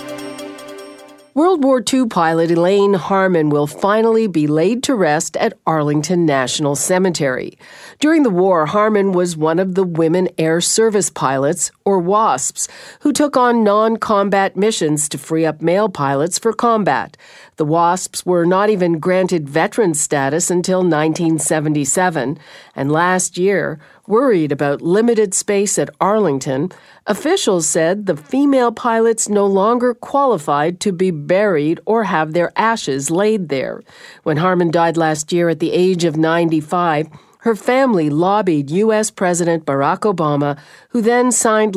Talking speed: 140 wpm